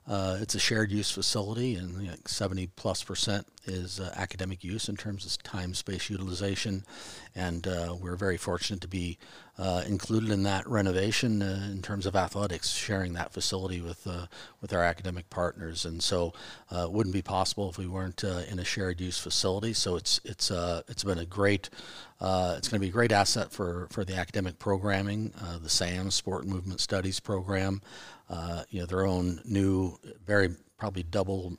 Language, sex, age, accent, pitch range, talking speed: English, male, 40-59, American, 90-100 Hz, 195 wpm